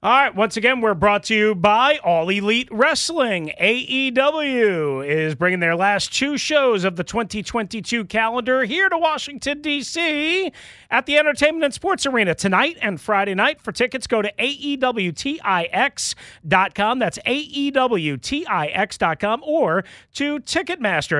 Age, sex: 40-59, male